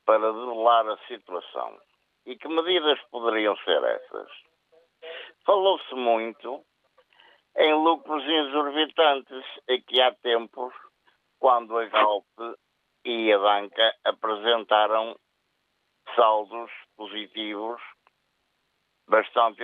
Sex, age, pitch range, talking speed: male, 50-69, 115-165 Hz, 90 wpm